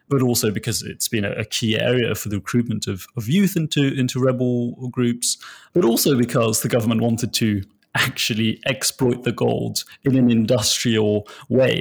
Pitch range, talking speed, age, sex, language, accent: 110-135 Hz, 170 wpm, 30-49, male, English, British